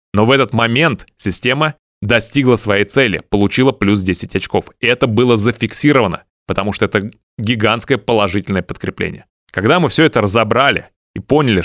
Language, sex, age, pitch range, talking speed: Russian, male, 20-39, 95-115 Hz, 145 wpm